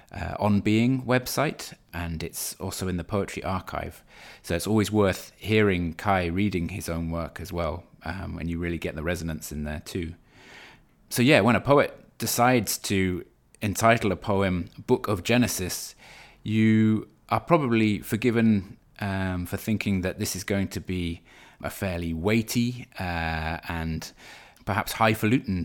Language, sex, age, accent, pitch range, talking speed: English, male, 20-39, British, 85-110 Hz, 155 wpm